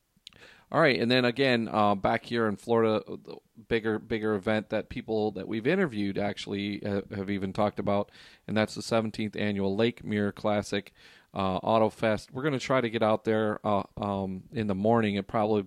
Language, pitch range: English, 100-115 Hz